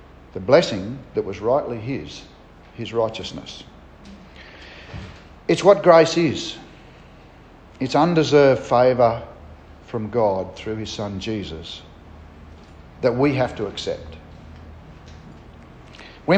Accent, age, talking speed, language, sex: Australian, 50-69, 100 wpm, English, male